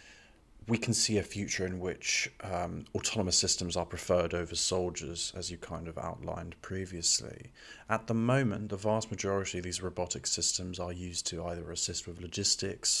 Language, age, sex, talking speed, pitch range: English, 30-49, male, 170 wpm, 85-100 Hz